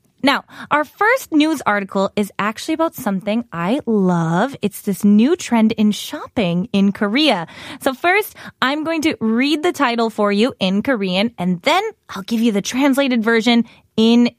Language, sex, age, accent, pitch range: Korean, female, 20-39, American, 205-285 Hz